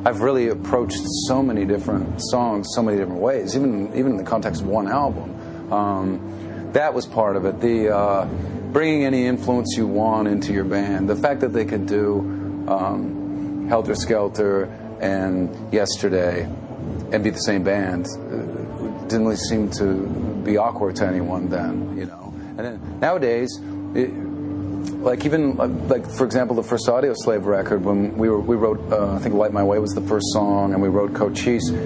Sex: male